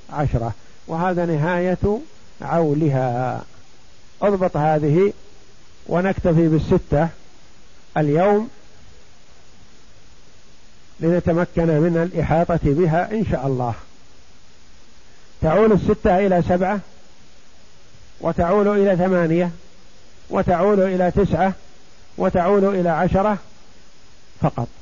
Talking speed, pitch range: 75 wpm, 160-215 Hz